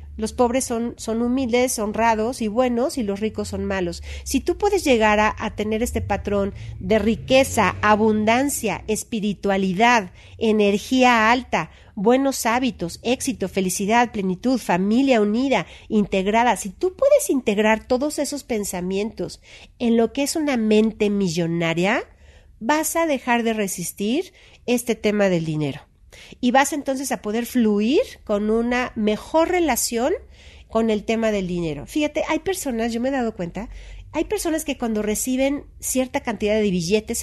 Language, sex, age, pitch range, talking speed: Spanish, female, 40-59, 205-265 Hz, 145 wpm